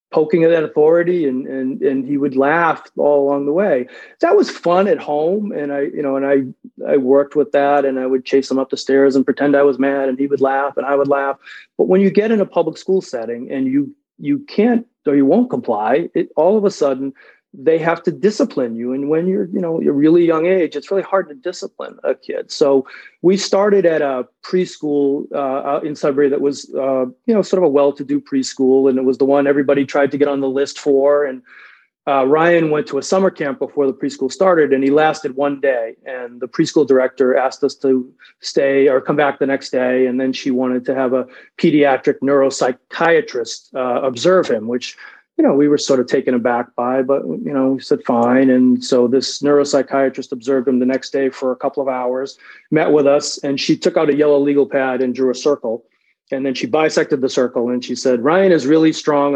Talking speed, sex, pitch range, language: 230 wpm, male, 135-160 Hz, English